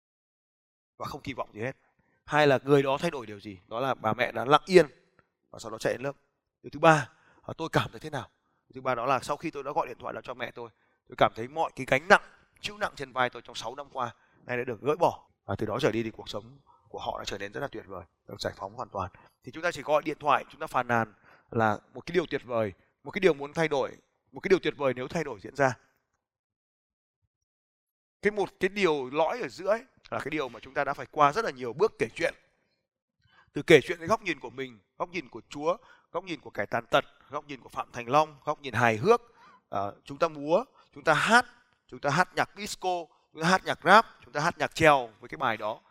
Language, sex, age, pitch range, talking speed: Vietnamese, male, 20-39, 120-165 Hz, 265 wpm